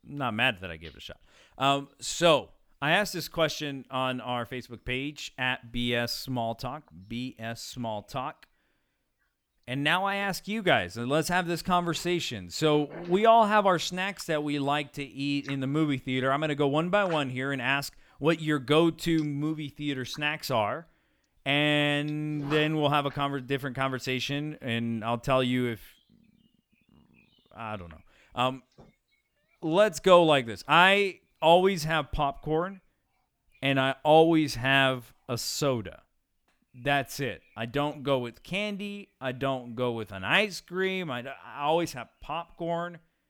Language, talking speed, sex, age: English, 160 wpm, male, 40-59